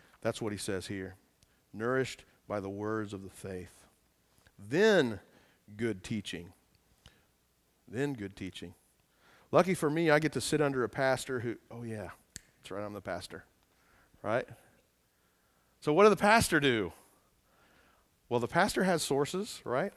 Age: 40-59